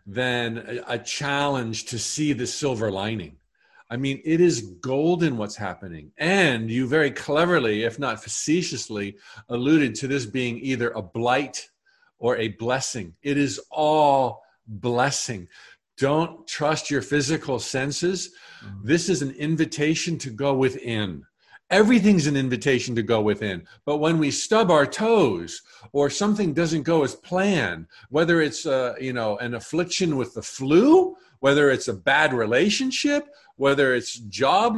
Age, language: 50-69, English